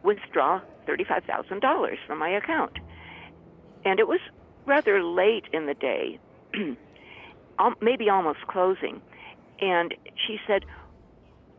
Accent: American